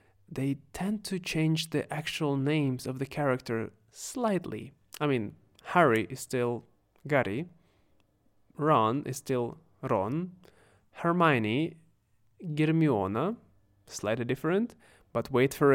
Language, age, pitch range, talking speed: Russian, 20-39, 125-170 Hz, 105 wpm